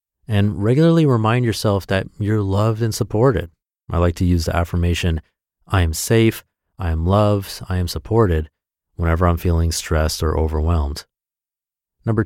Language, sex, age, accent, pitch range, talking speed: English, male, 30-49, American, 85-105 Hz, 150 wpm